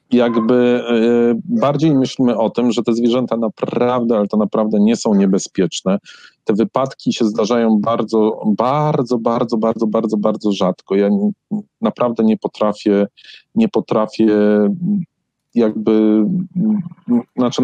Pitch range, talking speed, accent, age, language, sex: 110-130 Hz, 115 wpm, native, 40-59, Polish, male